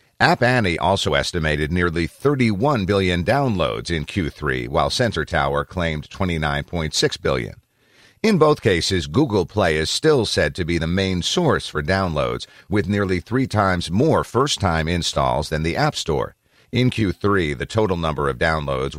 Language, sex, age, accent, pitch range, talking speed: English, male, 50-69, American, 80-100 Hz, 155 wpm